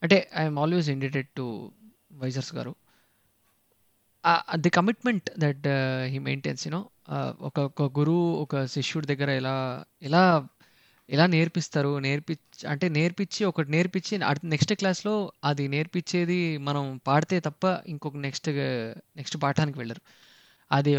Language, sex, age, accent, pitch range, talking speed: Telugu, male, 20-39, native, 140-175 Hz, 155 wpm